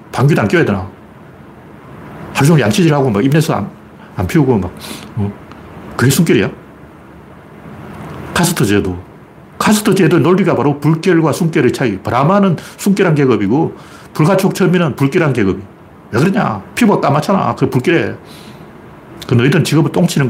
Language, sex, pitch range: Korean, male, 140-205 Hz